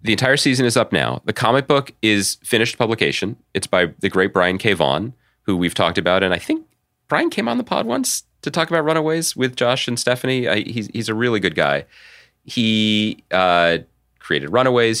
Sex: male